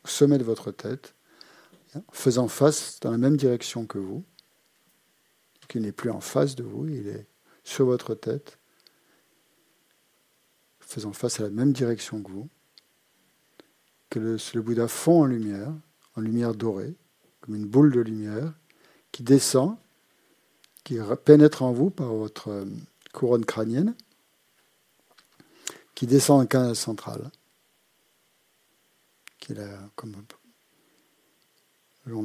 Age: 50-69